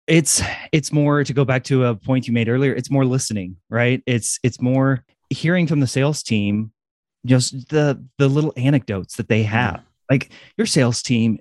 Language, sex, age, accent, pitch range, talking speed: English, male, 30-49, American, 110-140 Hz, 190 wpm